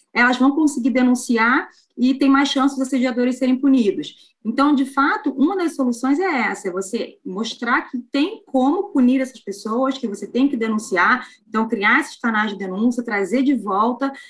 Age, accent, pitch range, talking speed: 20-39, Brazilian, 220-275 Hz, 180 wpm